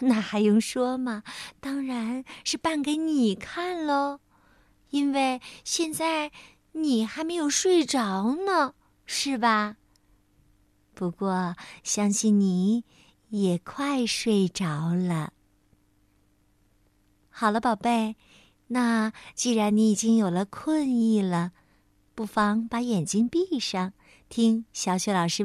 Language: Chinese